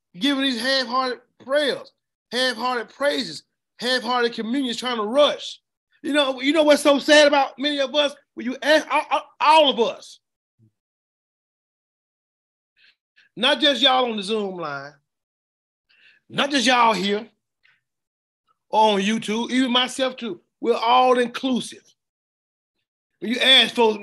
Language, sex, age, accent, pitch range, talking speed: English, male, 30-49, American, 210-275 Hz, 130 wpm